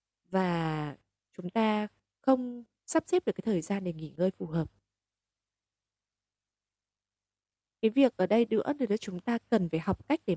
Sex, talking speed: female, 160 wpm